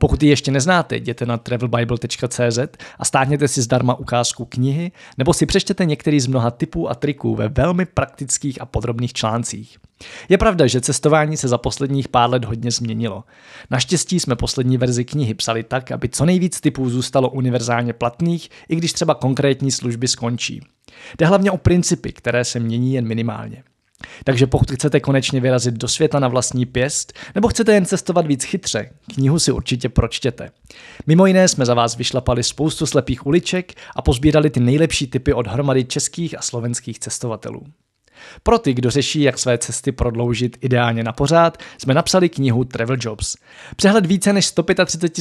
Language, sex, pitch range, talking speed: Czech, male, 120-155 Hz, 170 wpm